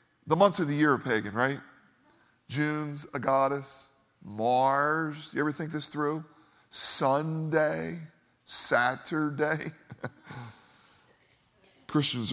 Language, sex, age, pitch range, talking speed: English, male, 40-59, 135-165 Hz, 95 wpm